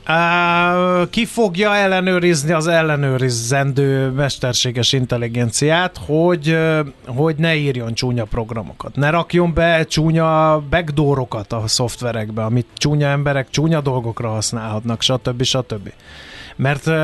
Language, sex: Hungarian, male